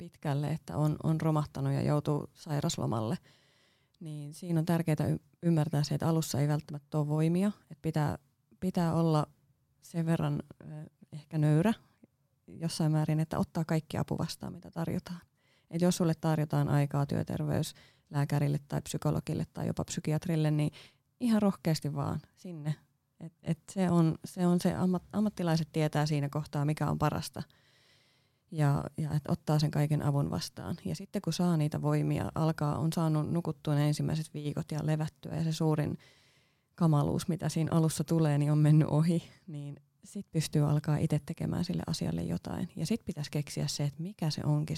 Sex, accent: female, native